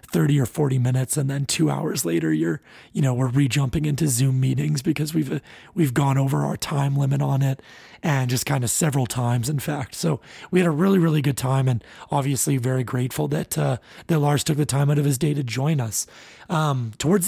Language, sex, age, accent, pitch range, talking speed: English, male, 30-49, American, 135-160 Hz, 220 wpm